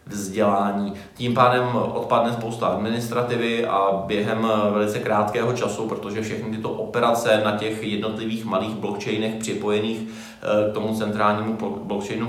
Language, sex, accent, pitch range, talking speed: Czech, male, native, 105-120 Hz, 115 wpm